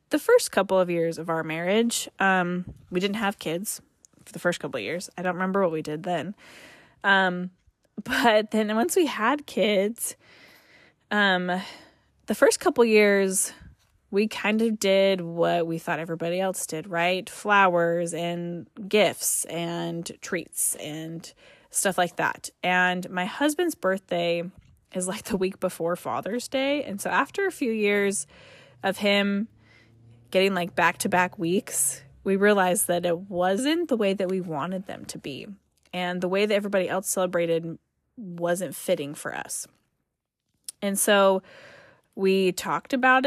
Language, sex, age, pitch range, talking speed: English, female, 10-29, 175-210 Hz, 155 wpm